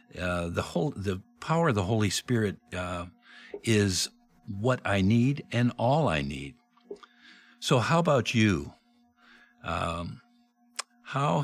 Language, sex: English, male